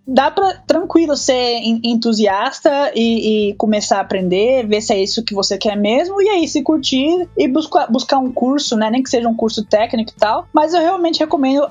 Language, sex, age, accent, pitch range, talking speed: Portuguese, female, 20-39, Brazilian, 220-280 Hz, 205 wpm